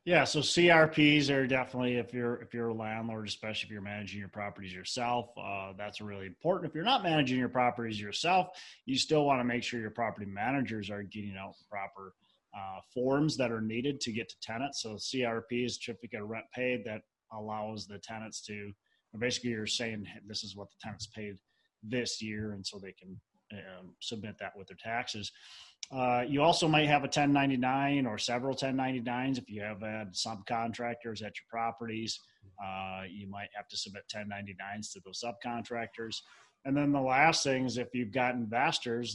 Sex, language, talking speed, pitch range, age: male, English, 190 wpm, 105-125 Hz, 30-49